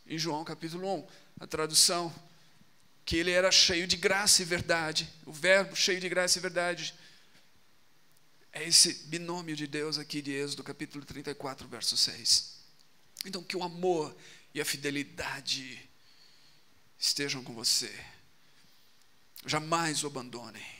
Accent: Brazilian